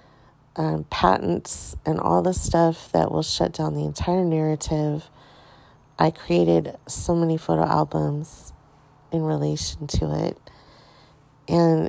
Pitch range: 135-175 Hz